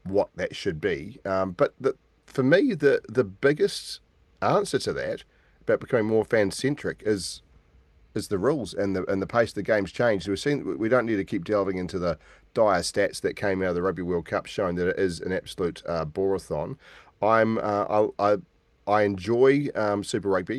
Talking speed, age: 205 wpm, 40-59